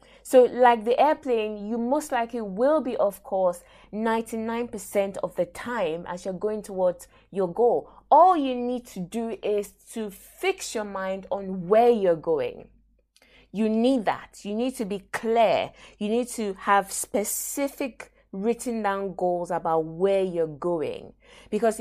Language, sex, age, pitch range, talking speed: English, female, 20-39, 195-250 Hz, 155 wpm